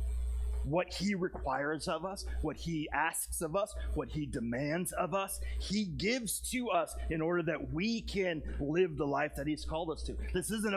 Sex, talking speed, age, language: male, 190 wpm, 30-49, English